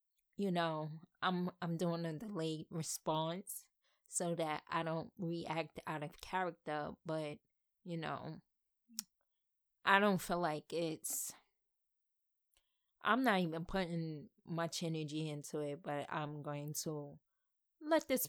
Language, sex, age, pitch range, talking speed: English, female, 20-39, 150-180 Hz, 125 wpm